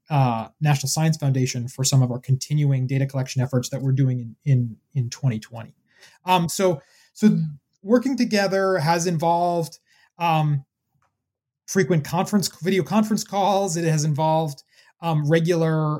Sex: male